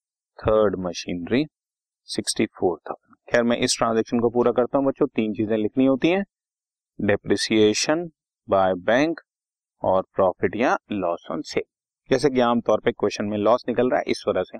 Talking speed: 105 wpm